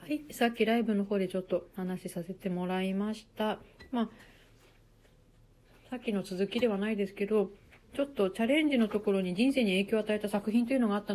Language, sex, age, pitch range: Japanese, female, 40-59, 185-250 Hz